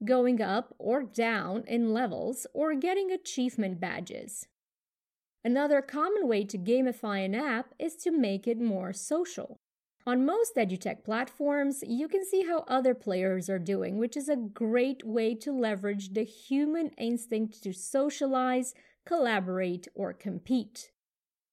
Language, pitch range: English, 210-270 Hz